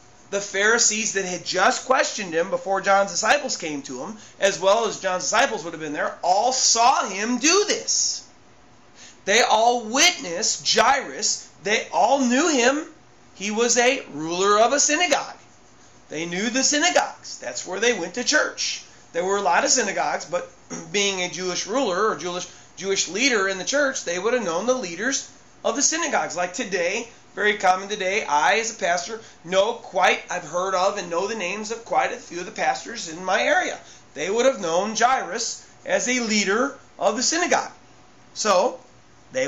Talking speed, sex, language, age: 180 wpm, male, English, 30-49